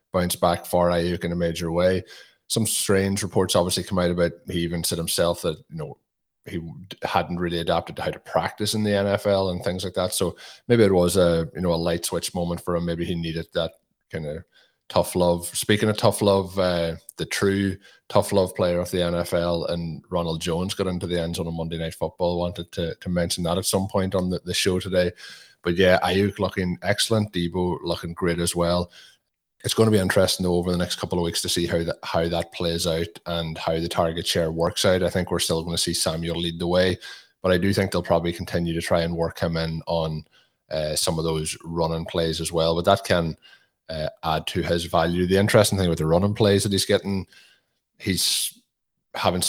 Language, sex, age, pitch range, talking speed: English, male, 20-39, 85-95 Hz, 225 wpm